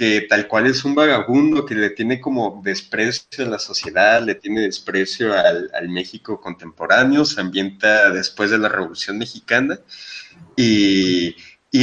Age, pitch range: 30-49, 100-130 Hz